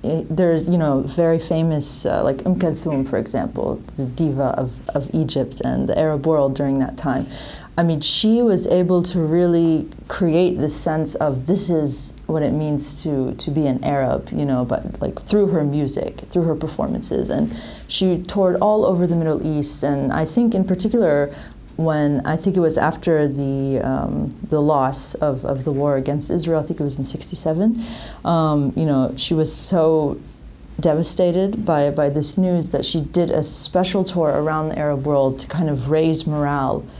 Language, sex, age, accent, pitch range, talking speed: English, female, 30-49, American, 145-170 Hz, 185 wpm